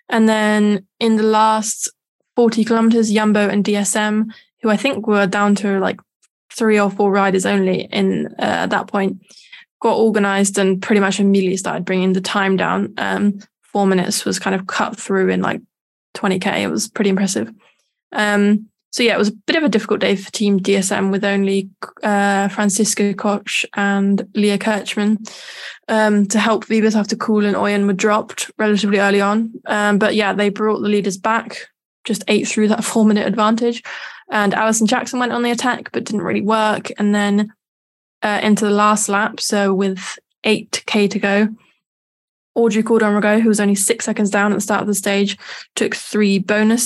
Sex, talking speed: female, 185 wpm